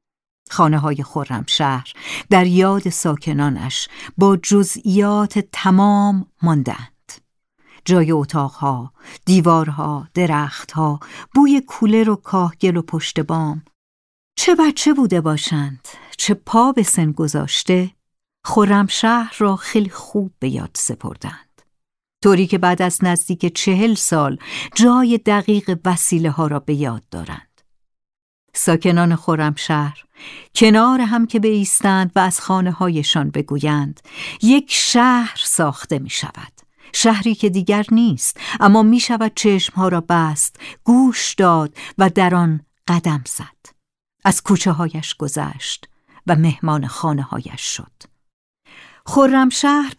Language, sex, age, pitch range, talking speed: Persian, female, 60-79, 155-215 Hz, 115 wpm